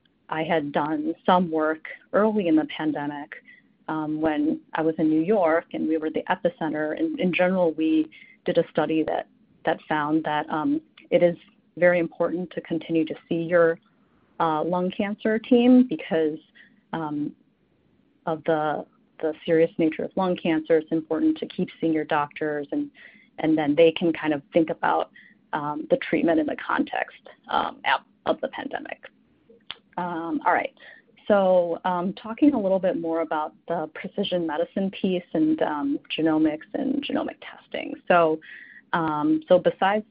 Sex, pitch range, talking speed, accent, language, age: female, 160-210 Hz, 160 wpm, American, English, 30-49